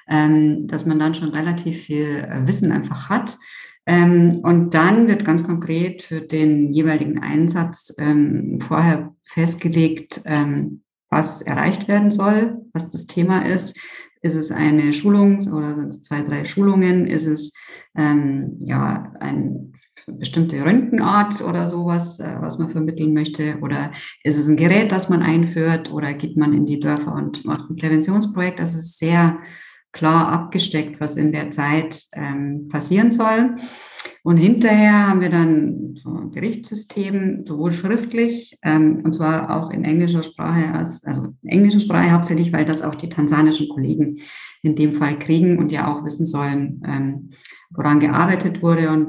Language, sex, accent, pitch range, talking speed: German, female, German, 150-175 Hz, 150 wpm